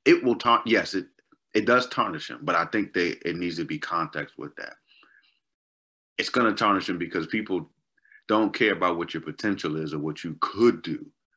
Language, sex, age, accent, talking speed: English, male, 30-49, American, 205 wpm